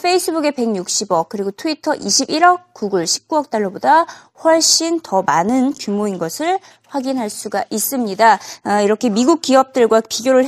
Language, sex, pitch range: Korean, female, 220-320 Hz